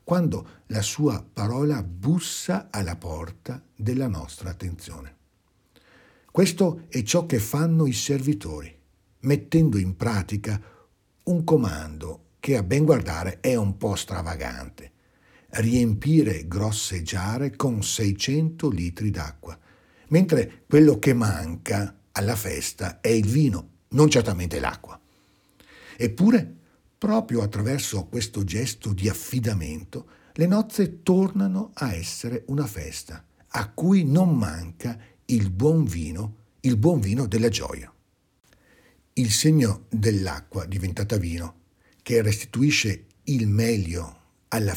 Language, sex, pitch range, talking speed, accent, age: Italian, male, 90-140 Hz, 115 wpm, native, 60-79